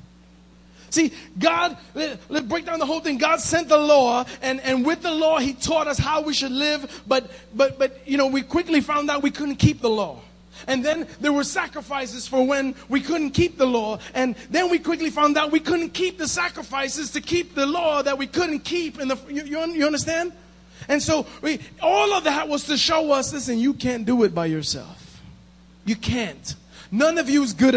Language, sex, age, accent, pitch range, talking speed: English, male, 30-49, American, 235-310 Hz, 215 wpm